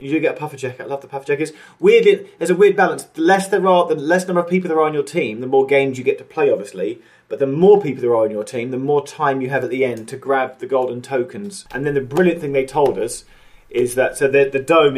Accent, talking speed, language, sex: British, 300 wpm, English, male